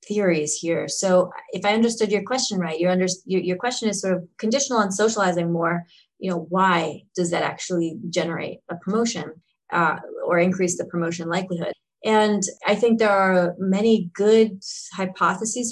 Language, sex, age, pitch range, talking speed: English, female, 30-49, 175-210 Hz, 160 wpm